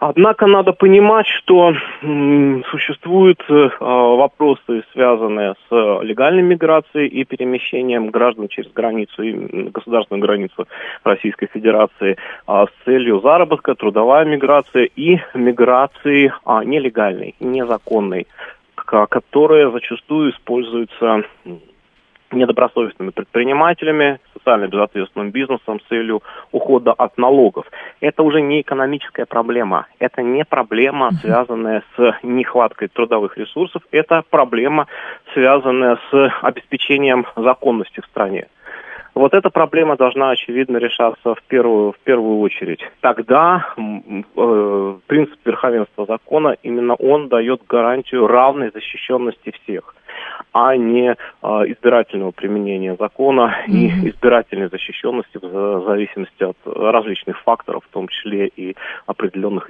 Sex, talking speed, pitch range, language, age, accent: male, 105 wpm, 115-150 Hz, Russian, 30-49, native